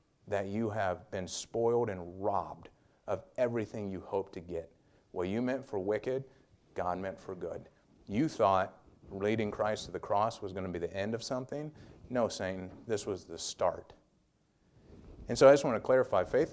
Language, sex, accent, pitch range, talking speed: English, male, American, 95-120 Hz, 190 wpm